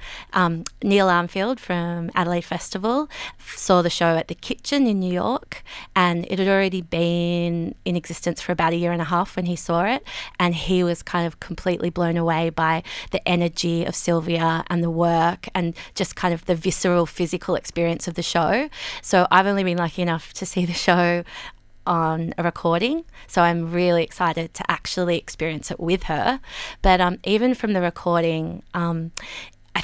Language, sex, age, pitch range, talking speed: English, female, 20-39, 170-190 Hz, 185 wpm